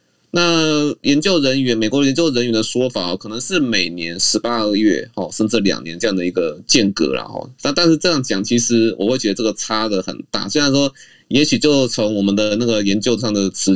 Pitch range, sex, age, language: 95-125 Hz, male, 20-39, Chinese